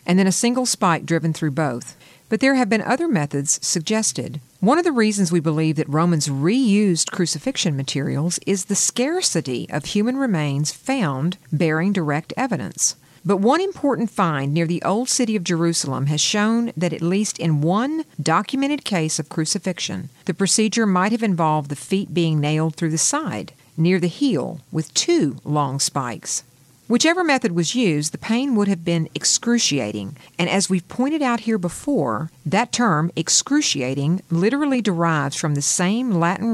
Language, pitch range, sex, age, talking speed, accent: English, 155-215 Hz, female, 50-69, 170 wpm, American